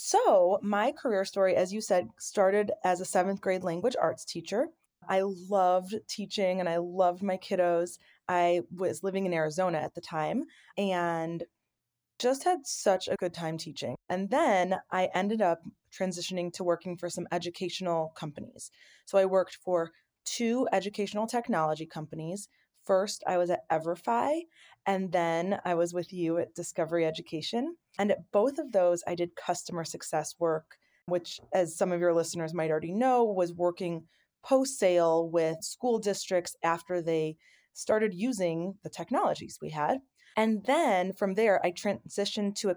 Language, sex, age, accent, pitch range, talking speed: English, female, 20-39, American, 170-200 Hz, 160 wpm